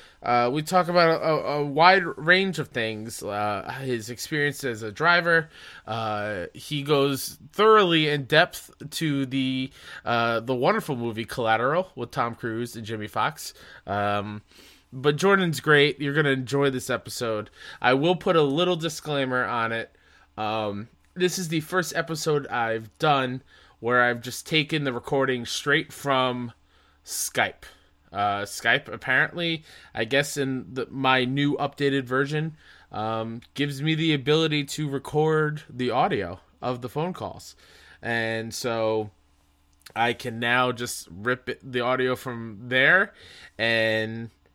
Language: English